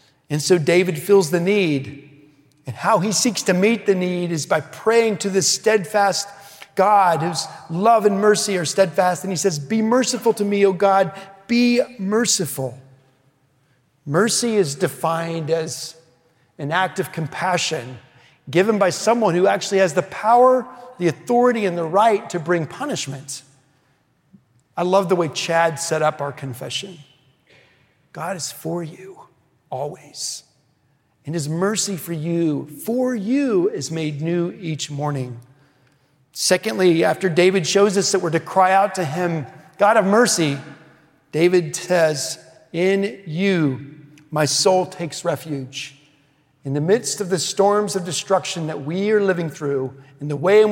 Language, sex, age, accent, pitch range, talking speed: English, male, 40-59, American, 145-200 Hz, 150 wpm